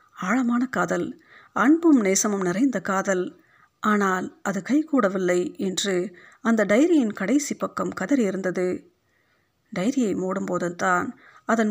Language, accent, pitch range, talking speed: Tamil, native, 185-250 Hz, 90 wpm